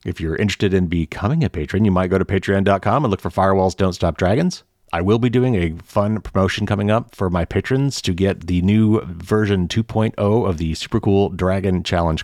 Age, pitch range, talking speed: 30-49, 90-115 Hz, 210 wpm